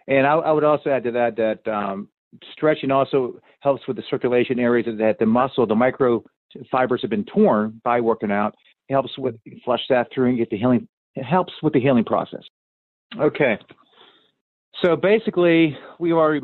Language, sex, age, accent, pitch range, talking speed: English, male, 40-59, American, 115-145 Hz, 190 wpm